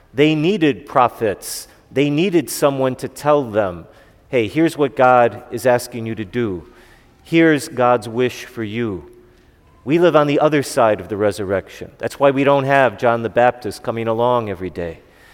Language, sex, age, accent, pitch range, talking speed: English, male, 40-59, American, 110-135 Hz, 170 wpm